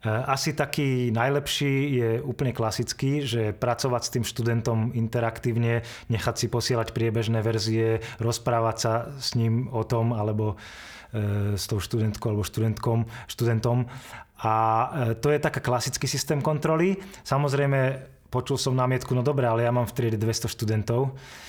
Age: 20-39